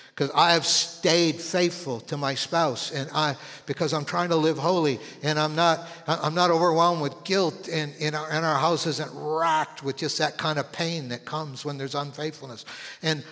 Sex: male